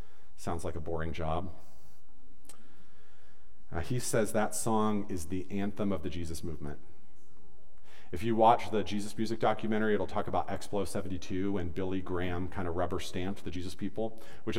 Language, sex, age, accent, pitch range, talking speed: English, male, 40-59, American, 70-95 Hz, 165 wpm